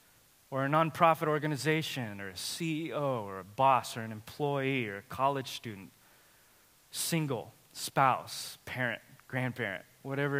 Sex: male